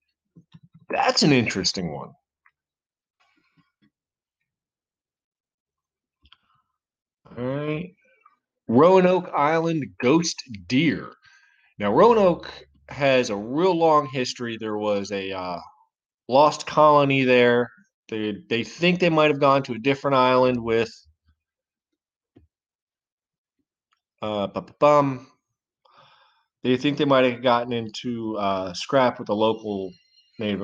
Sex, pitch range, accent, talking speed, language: male, 110-145 Hz, American, 100 wpm, English